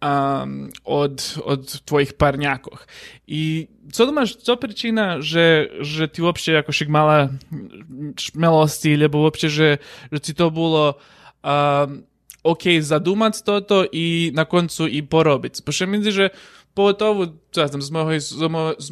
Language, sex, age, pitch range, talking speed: Ukrainian, male, 20-39, 140-160 Hz, 130 wpm